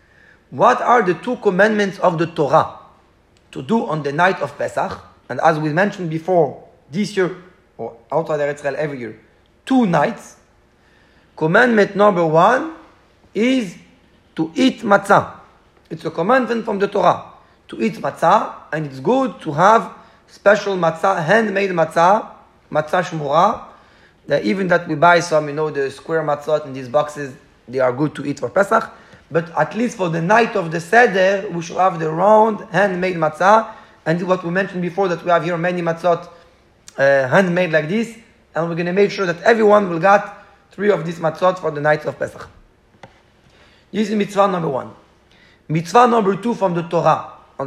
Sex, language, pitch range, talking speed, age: male, English, 155-205 Hz, 170 wpm, 30-49